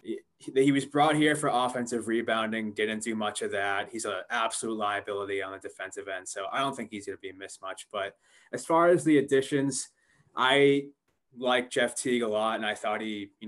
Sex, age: male, 20-39